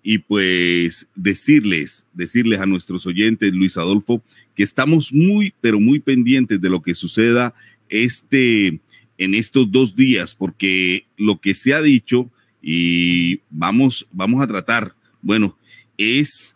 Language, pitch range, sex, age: Spanish, 100-130 Hz, male, 40-59